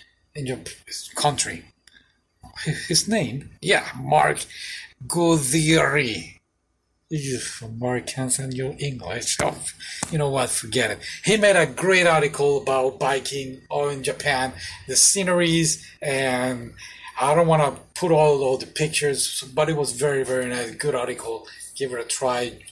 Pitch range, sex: 125-170 Hz, male